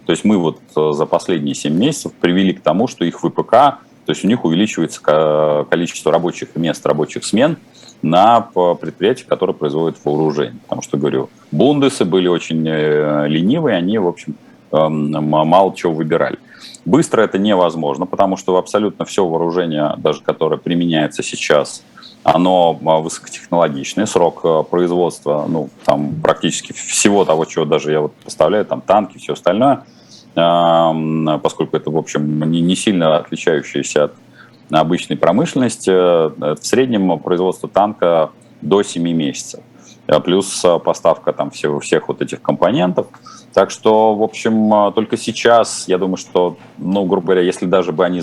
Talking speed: 140 wpm